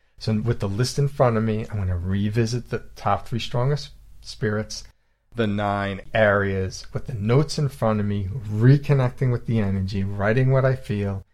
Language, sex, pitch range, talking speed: English, male, 100-120 Hz, 185 wpm